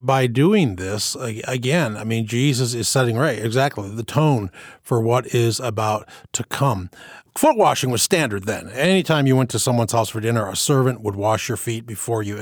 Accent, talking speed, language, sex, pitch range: American, 195 wpm, English, male, 110-145 Hz